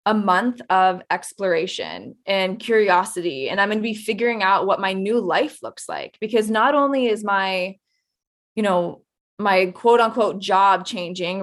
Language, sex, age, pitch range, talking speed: English, female, 20-39, 190-230 Hz, 165 wpm